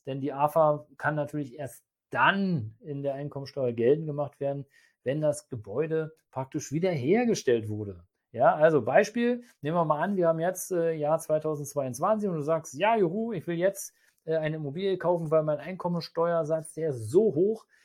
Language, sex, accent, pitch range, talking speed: German, male, German, 145-180 Hz, 170 wpm